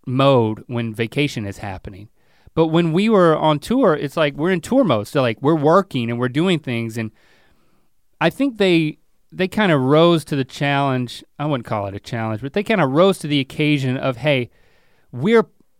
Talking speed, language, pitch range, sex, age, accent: 200 wpm, English, 120-160 Hz, male, 30-49, American